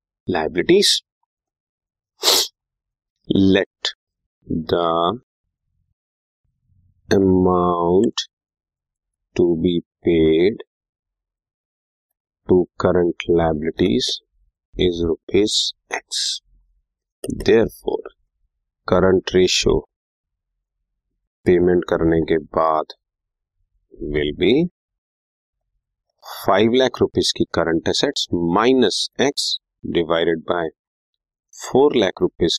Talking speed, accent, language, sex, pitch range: 60 wpm, Indian, English, male, 85-135 Hz